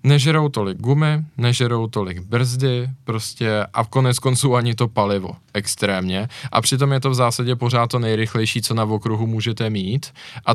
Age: 20-39